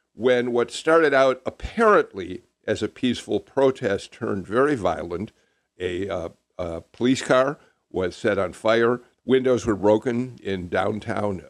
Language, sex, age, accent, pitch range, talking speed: English, male, 50-69, American, 105-135 Hz, 130 wpm